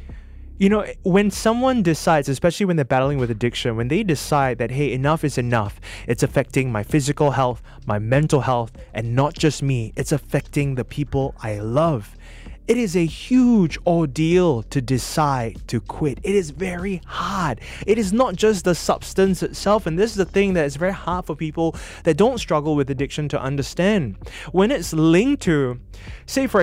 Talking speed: 185 wpm